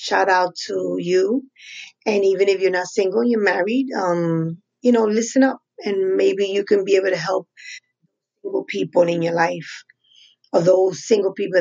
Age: 30-49